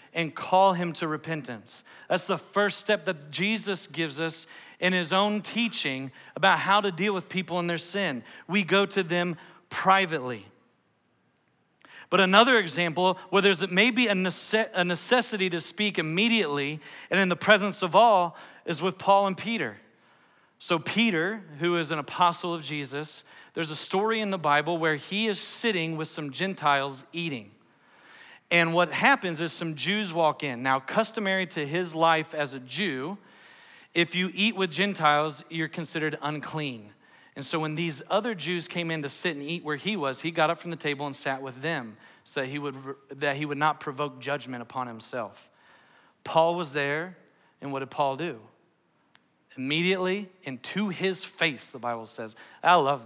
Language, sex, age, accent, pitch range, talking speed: English, male, 40-59, American, 150-190 Hz, 170 wpm